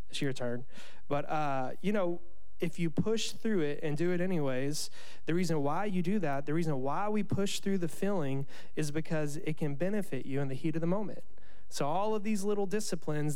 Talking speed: 215 wpm